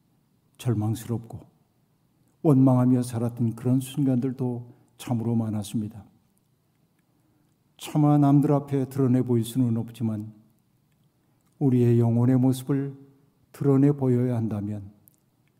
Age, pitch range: 60-79, 120-145 Hz